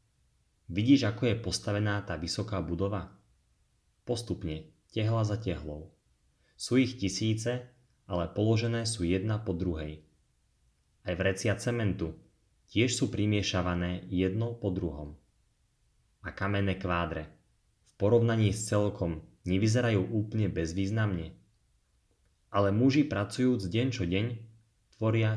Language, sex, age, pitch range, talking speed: Slovak, male, 30-49, 90-110 Hz, 110 wpm